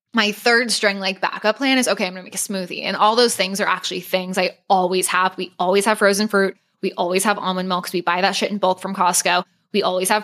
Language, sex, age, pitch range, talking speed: English, female, 10-29, 185-220 Hz, 260 wpm